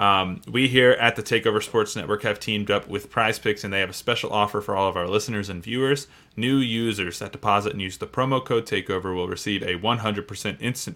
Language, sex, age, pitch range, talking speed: English, male, 20-39, 100-120 Hz, 225 wpm